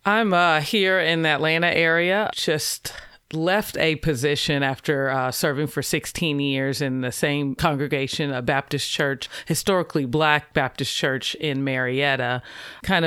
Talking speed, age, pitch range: 140 wpm, 40-59, 135-165 Hz